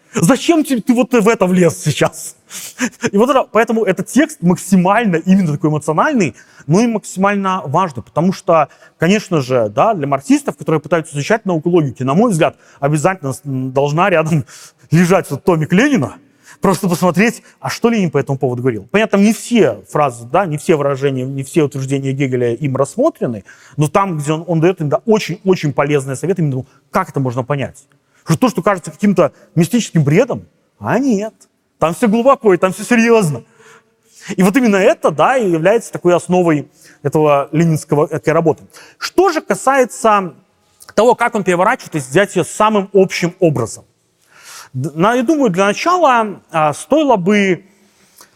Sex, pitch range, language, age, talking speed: male, 150-205 Hz, Russian, 30-49, 160 wpm